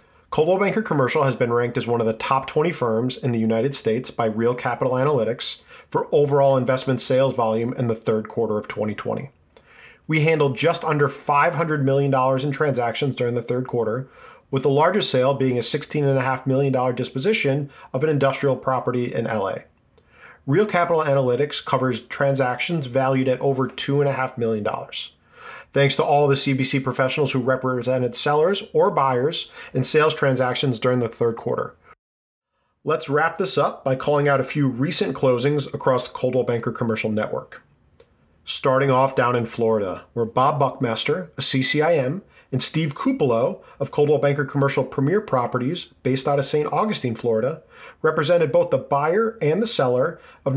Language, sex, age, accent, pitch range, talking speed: English, male, 40-59, American, 125-150 Hz, 165 wpm